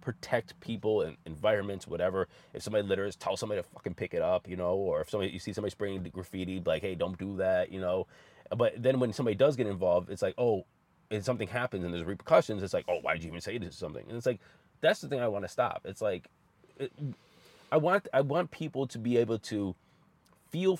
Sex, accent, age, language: male, American, 30-49, English